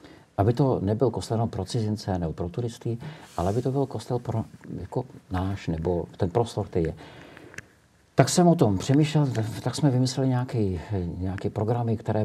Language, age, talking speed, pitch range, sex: Czech, 50-69, 160 wpm, 90-115 Hz, male